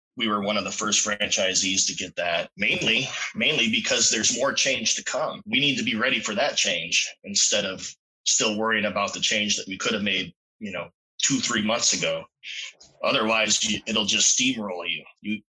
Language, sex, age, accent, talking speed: English, male, 20-39, American, 195 wpm